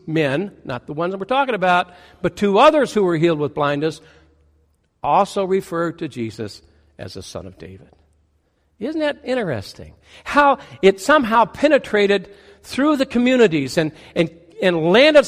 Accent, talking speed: American, 150 wpm